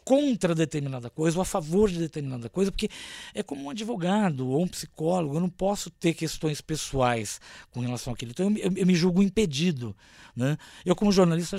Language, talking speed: Portuguese, 190 wpm